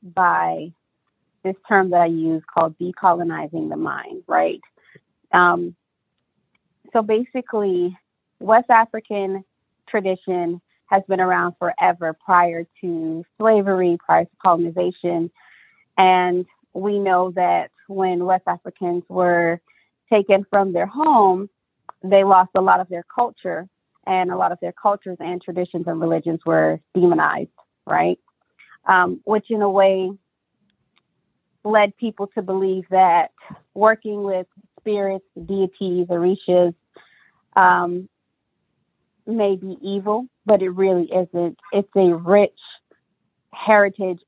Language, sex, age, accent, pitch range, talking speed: English, female, 30-49, American, 175-200 Hz, 115 wpm